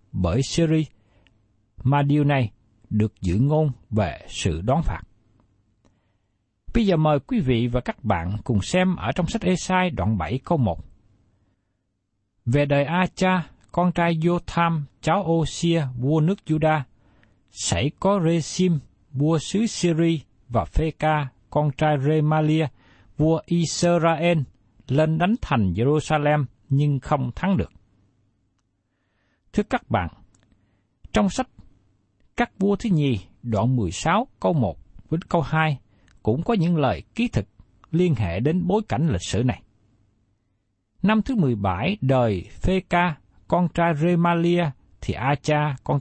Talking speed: 145 wpm